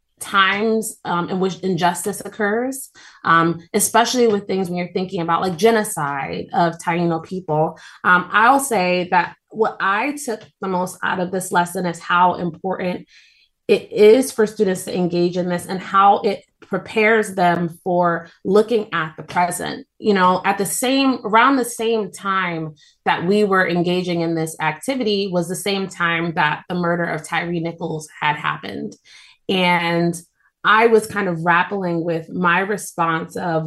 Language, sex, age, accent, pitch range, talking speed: English, female, 20-39, American, 175-225 Hz, 160 wpm